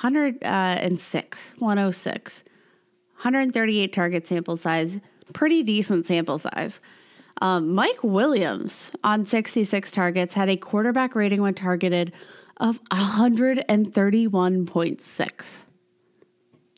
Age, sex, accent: 20-39, female, American